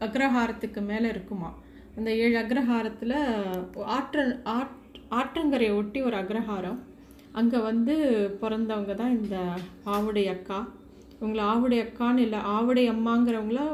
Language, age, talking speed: Tamil, 30-49, 110 wpm